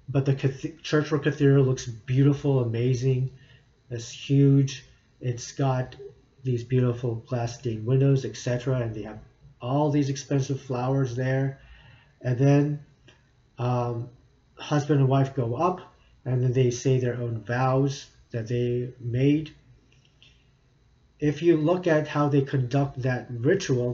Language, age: English, 40-59